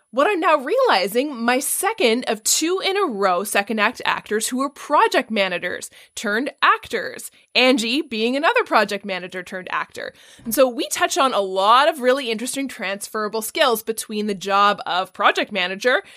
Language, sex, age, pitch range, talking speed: English, female, 20-39, 190-245 Hz, 165 wpm